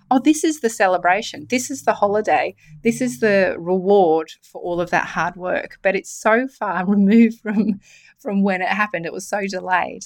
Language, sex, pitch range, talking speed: English, female, 170-225 Hz, 195 wpm